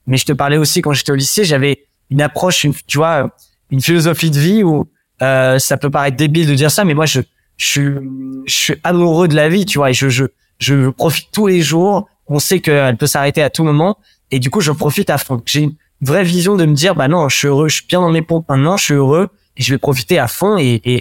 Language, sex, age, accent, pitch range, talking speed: French, male, 20-39, French, 140-175 Hz, 270 wpm